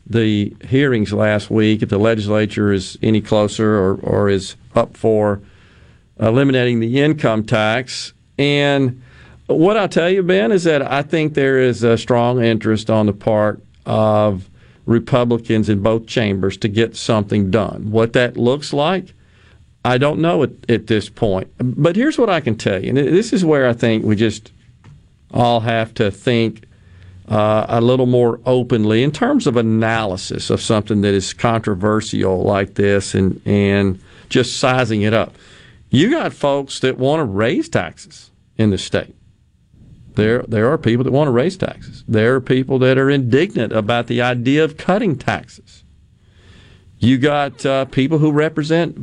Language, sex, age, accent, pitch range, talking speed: English, male, 50-69, American, 105-135 Hz, 165 wpm